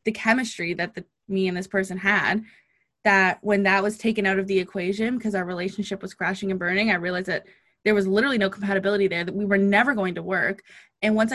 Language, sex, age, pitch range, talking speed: English, female, 20-39, 190-225 Hz, 225 wpm